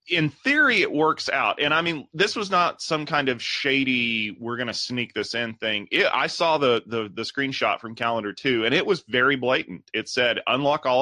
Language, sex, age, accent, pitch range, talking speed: English, male, 30-49, American, 105-130 Hz, 220 wpm